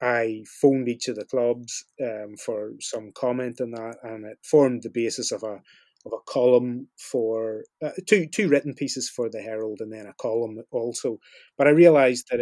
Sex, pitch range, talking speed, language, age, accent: male, 115-130 Hz, 195 wpm, English, 30-49, British